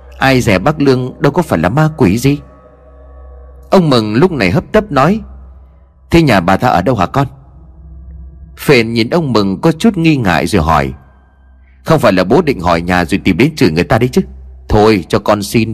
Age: 30-49